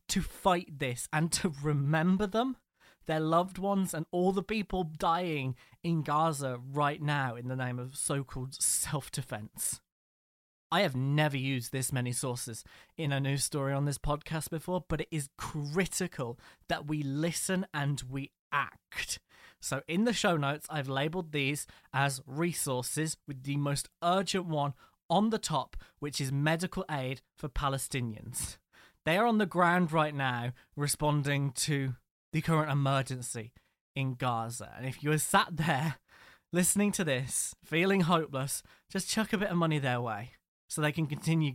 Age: 20-39